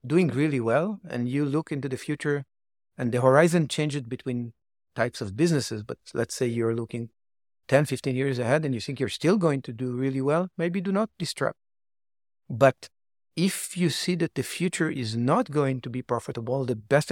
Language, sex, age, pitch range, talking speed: English, male, 50-69, 125-165 Hz, 195 wpm